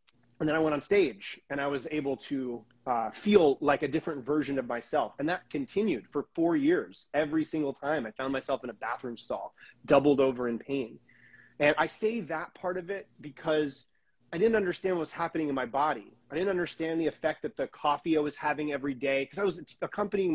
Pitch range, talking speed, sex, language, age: 130-165 Hz, 215 wpm, male, English, 30-49